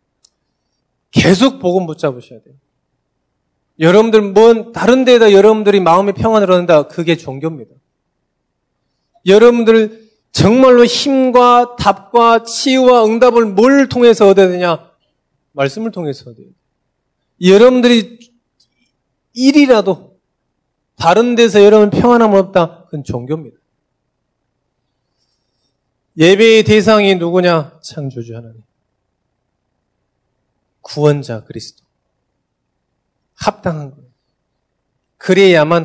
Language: Korean